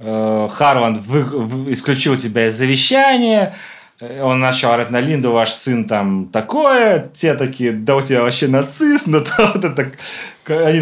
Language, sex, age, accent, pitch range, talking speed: Russian, male, 30-49, native, 115-155 Hz, 150 wpm